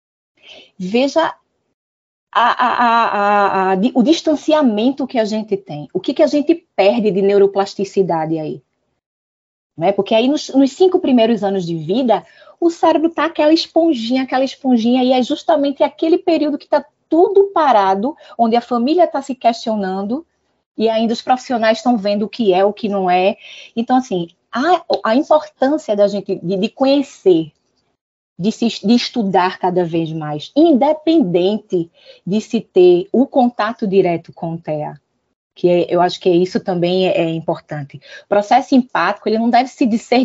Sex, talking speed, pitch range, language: female, 165 wpm, 195-280 Hz, Portuguese